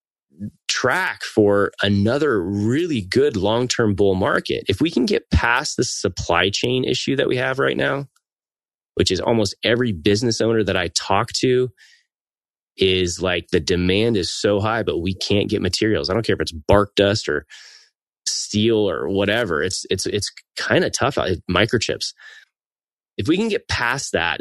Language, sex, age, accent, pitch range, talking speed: English, male, 20-39, American, 90-115 Hz, 165 wpm